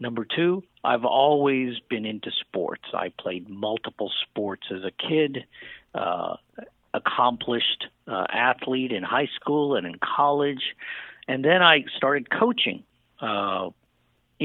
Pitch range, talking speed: 110-145 Hz, 125 wpm